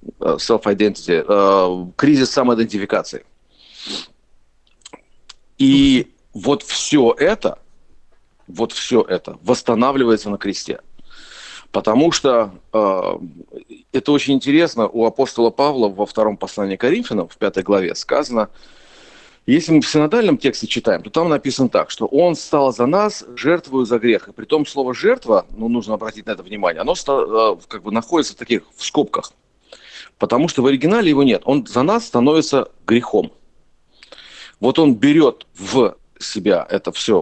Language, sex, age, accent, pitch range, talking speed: Ukrainian, male, 40-59, native, 105-150 Hz, 135 wpm